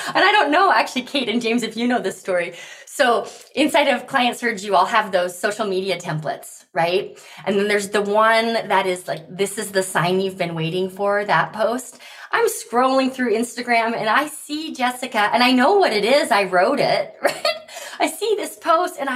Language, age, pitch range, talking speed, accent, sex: English, 20-39, 185-260 Hz, 210 wpm, American, female